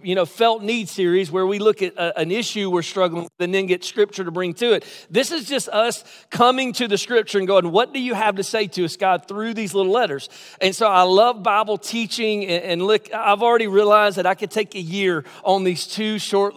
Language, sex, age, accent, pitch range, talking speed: English, male, 40-59, American, 180-220 Hz, 245 wpm